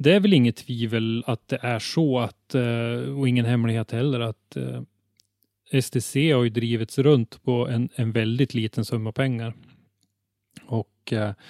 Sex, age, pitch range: male, 30-49, 115-130 Hz